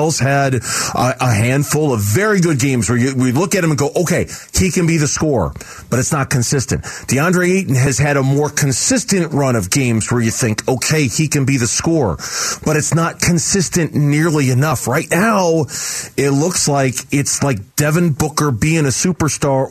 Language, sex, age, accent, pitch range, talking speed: English, male, 40-59, American, 135-175 Hz, 190 wpm